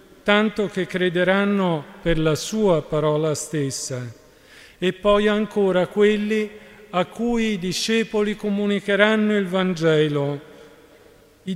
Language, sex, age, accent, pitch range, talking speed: Italian, male, 50-69, native, 155-195 Hz, 105 wpm